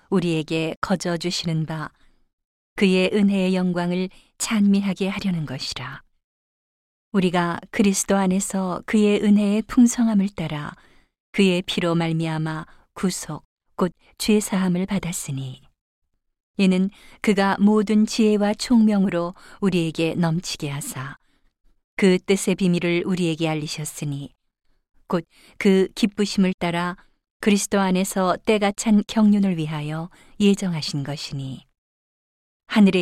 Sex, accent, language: female, native, Korean